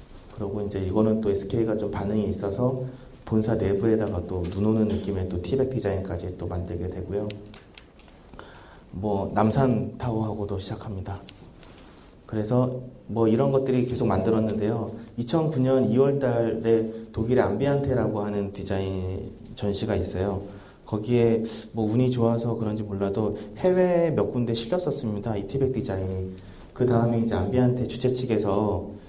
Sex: male